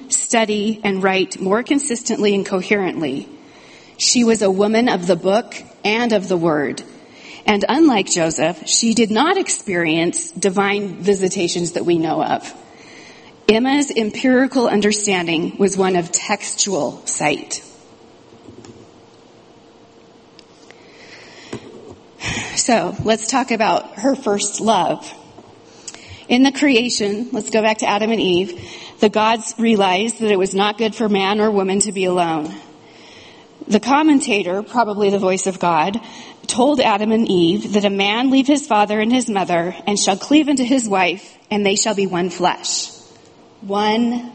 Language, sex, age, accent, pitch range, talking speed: English, female, 40-59, American, 195-240 Hz, 140 wpm